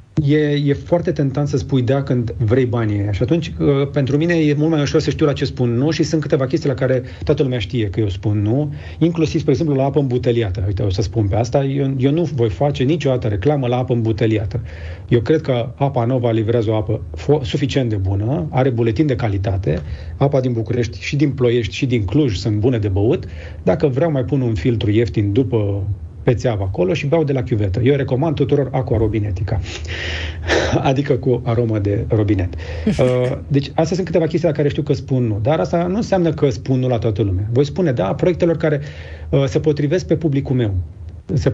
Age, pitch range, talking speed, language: 40-59, 110-145 Hz, 210 wpm, Romanian